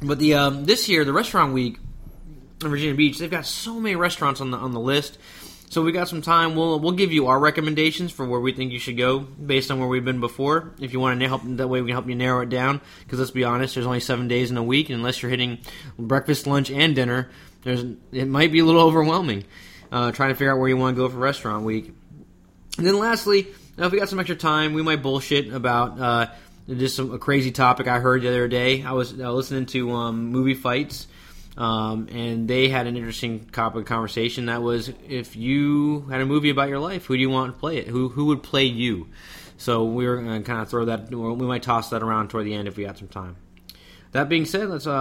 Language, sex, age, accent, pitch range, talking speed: English, male, 20-39, American, 120-145 Hz, 245 wpm